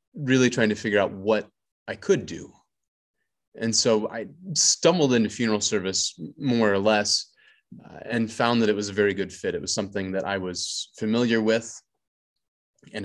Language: English